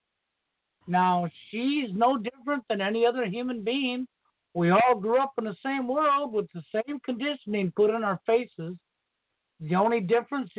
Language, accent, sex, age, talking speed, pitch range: English, American, male, 60-79, 160 wpm, 195-240 Hz